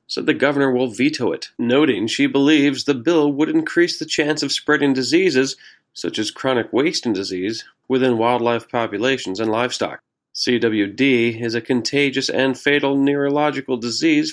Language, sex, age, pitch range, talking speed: English, male, 40-59, 125-155 Hz, 150 wpm